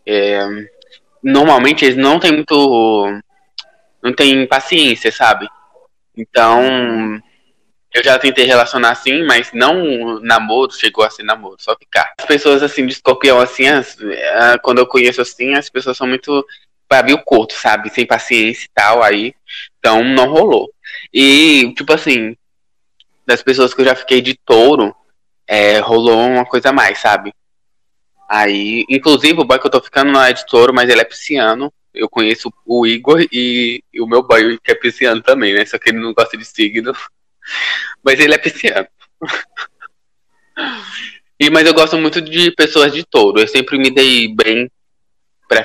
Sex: male